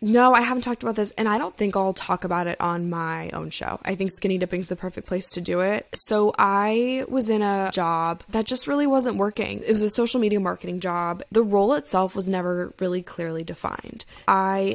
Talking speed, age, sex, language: 230 wpm, 10-29, female, English